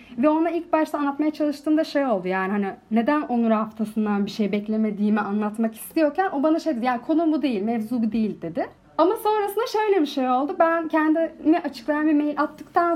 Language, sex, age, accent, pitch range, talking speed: Turkish, female, 30-49, native, 225-310 Hz, 195 wpm